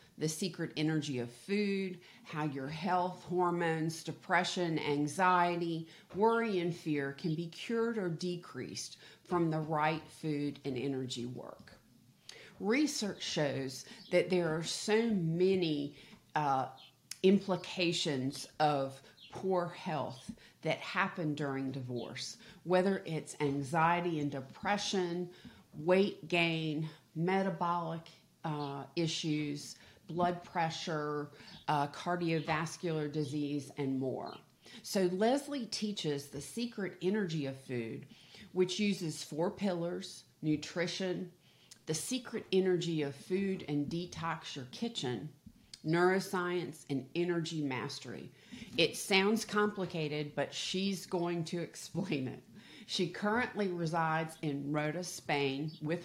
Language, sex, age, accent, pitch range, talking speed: English, female, 40-59, American, 150-185 Hz, 110 wpm